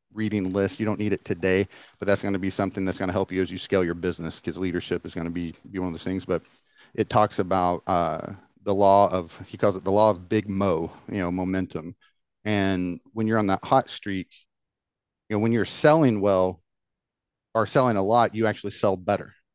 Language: English